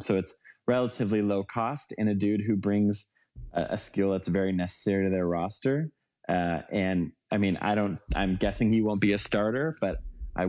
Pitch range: 90-105 Hz